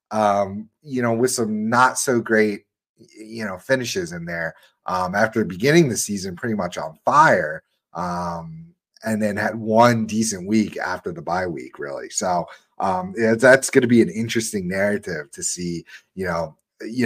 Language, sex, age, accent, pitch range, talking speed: English, male, 30-49, American, 95-130 Hz, 170 wpm